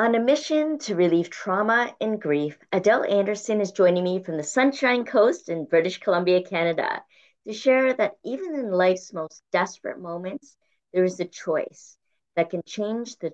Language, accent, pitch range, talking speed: English, American, 165-225 Hz, 170 wpm